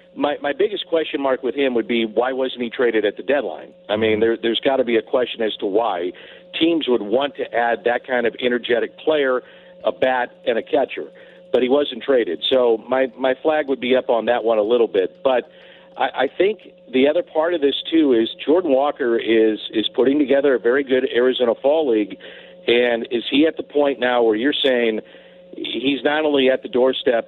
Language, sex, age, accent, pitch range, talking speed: English, male, 50-69, American, 120-150 Hz, 220 wpm